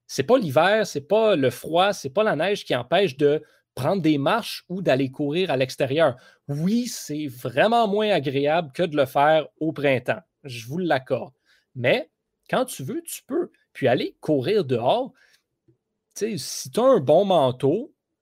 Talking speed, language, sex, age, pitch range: 180 wpm, French, male, 30-49, 135-200 Hz